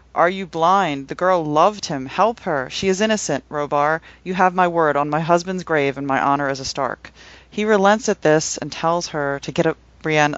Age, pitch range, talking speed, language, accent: 40-59, 140-170 Hz, 220 wpm, English, American